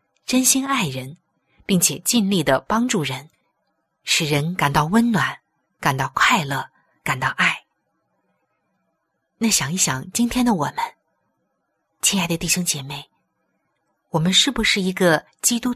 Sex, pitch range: female, 155-225 Hz